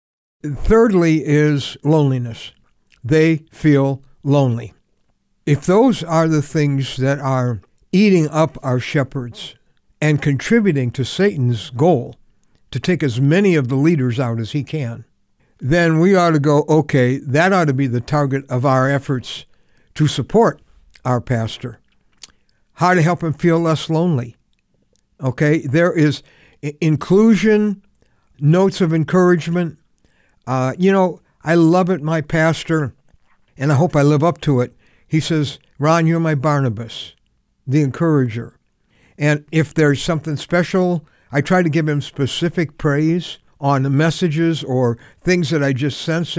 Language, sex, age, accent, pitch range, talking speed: English, male, 60-79, American, 135-165 Hz, 145 wpm